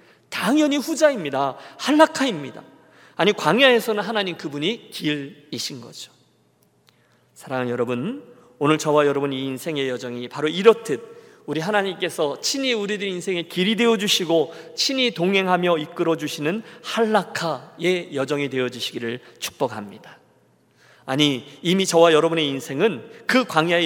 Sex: male